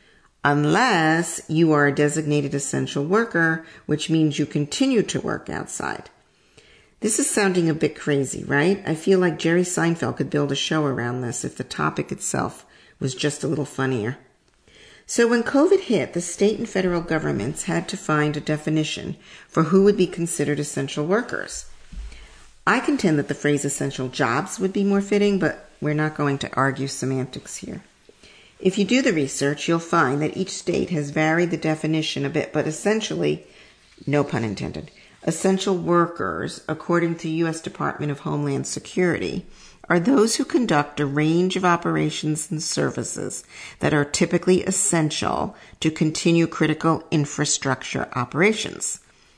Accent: American